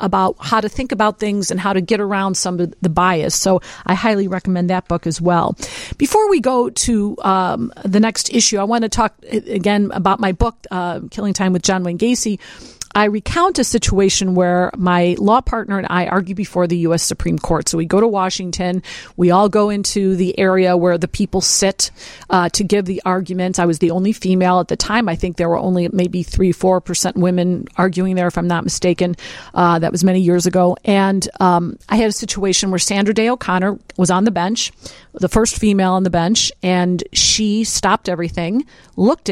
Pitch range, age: 180-225 Hz, 40-59